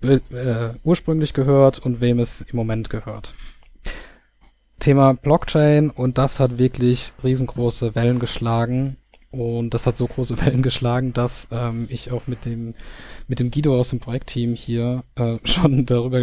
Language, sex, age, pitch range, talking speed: German, male, 20-39, 115-130 Hz, 150 wpm